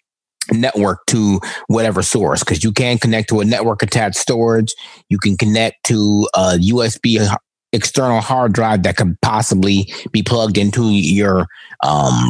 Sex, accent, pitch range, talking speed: male, American, 100-120 Hz, 145 wpm